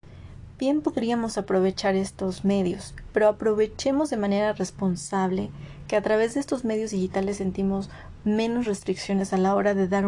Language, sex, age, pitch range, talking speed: Spanish, female, 30-49, 190-220 Hz, 150 wpm